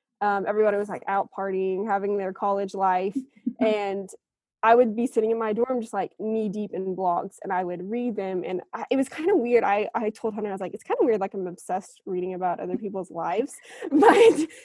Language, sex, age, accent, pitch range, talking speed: English, female, 20-39, American, 195-245 Hz, 230 wpm